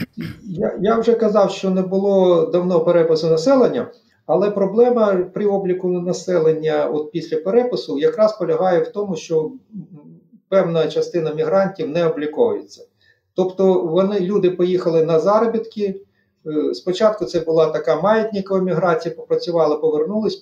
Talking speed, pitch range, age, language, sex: 120 wpm, 160-210 Hz, 50-69, Ukrainian, male